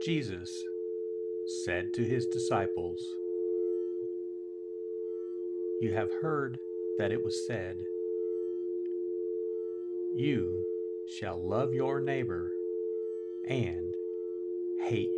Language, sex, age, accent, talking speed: English, male, 50-69, American, 75 wpm